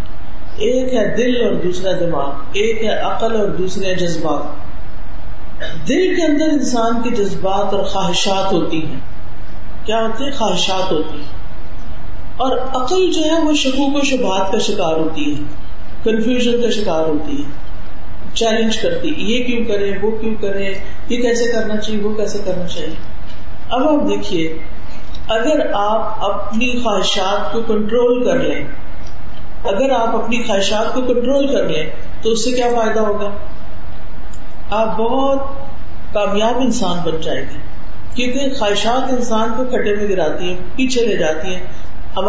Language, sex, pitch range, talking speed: Urdu, female, 180-245 Hz, 150 wpm